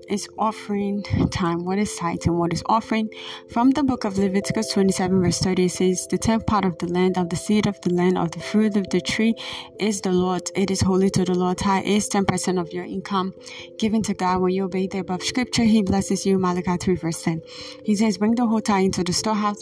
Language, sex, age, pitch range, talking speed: English, female, 20-39, 180-210 Hz, 240 wpm